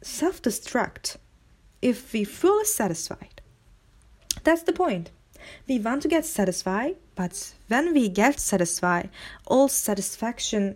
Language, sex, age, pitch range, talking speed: Turkish, female, 20-39, 200-285 Hz, 110 wpm